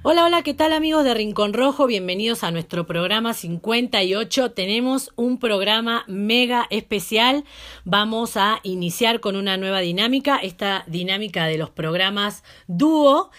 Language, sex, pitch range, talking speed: Spanish, female, 190-260 Hz, 140 wpm